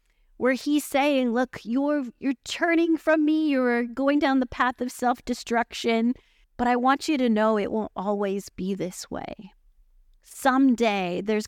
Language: English